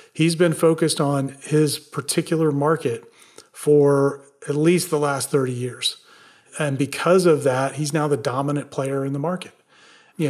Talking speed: 155 wpm